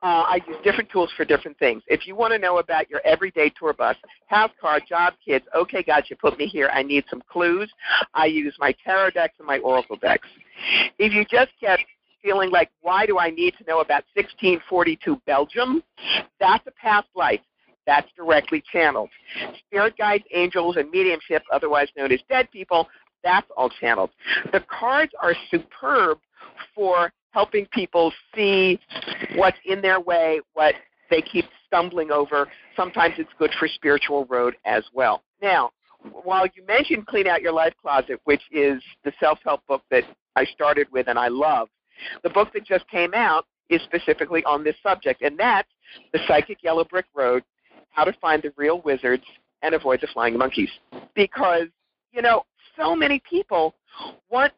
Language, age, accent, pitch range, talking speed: English, 50-69, American, 155-210 Hz, 175 wpm